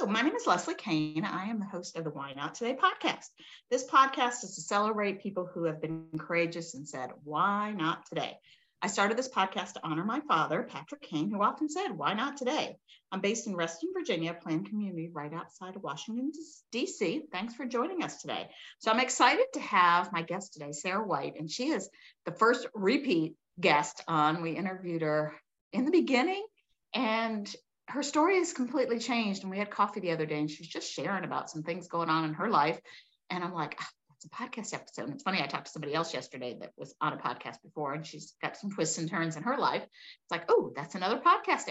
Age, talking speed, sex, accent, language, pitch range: 50-69, 220 wpm, female, American, English, 160-240 Hz